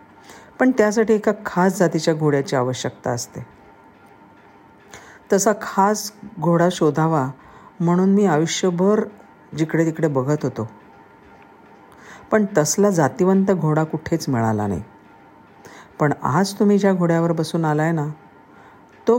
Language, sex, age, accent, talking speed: Marathi, female, 50-69, native, 110 wpm